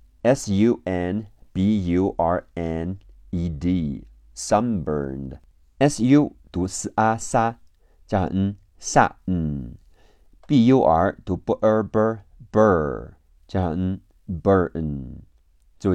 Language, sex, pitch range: Chinese, male, 75-105 Hz